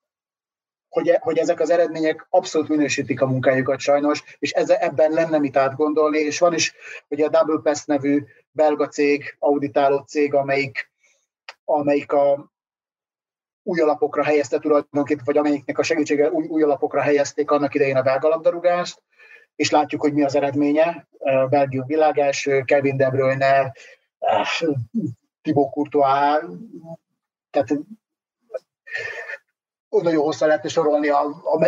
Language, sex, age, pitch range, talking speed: Hungarian, male, 30-49, 140-160 Hz, 125 wpm